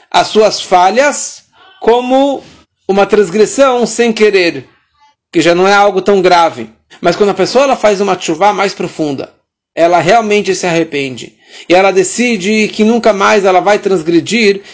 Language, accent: Portuguese, Brazilian